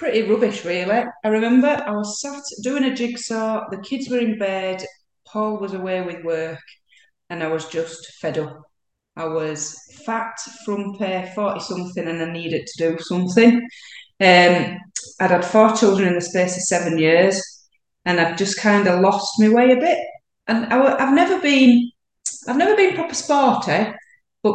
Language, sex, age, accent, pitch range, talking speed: English, female, 30-49, British, 165-220 Hz, 180 wpm